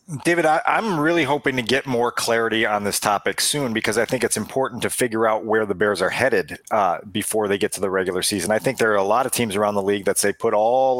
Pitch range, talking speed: 115-140 Hz, 265 wpm